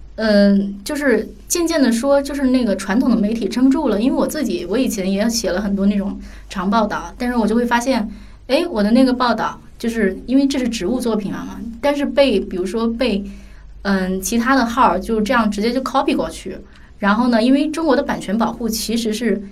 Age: 20-39